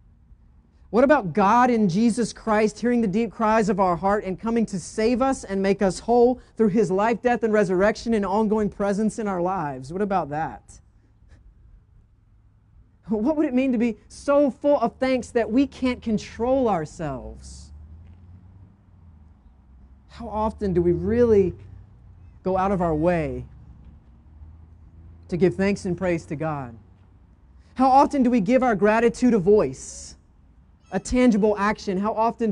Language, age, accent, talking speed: English, 40-59, American, 155 wpm